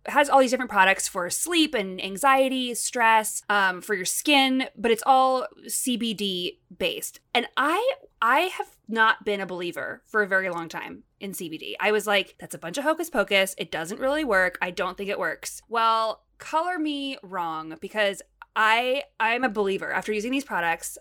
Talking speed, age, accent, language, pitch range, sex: 185 wpm, 20-39, American, English, 190-260 Hz, female